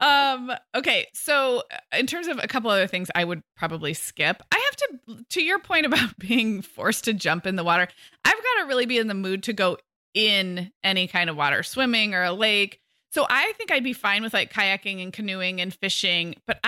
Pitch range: 180-245 Hz